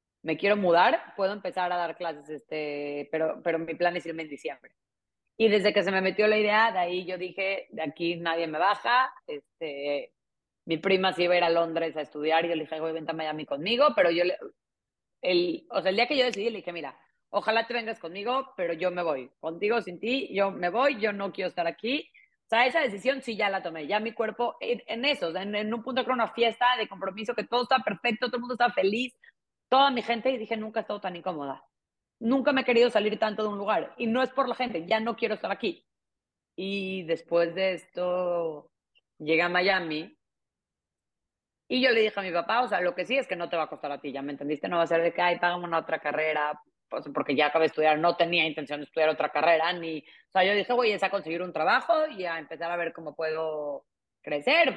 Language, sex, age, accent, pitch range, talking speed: Spanish, female, 30-49, Mexican, 165-225 Hz, 245 wpm